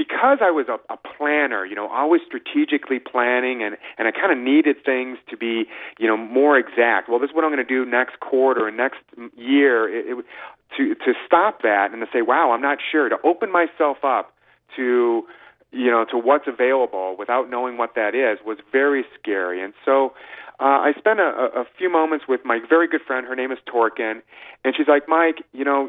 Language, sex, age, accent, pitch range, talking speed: English, male, 40-59, American, 125-155 Hz, 215 wpm